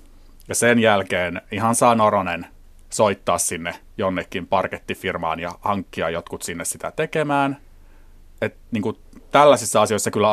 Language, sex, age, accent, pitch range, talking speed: Finnish, male, 30-49, native, 95-120 Hz, 120 wpm